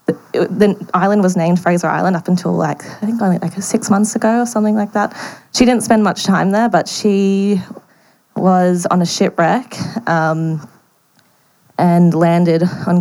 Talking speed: 165 wpm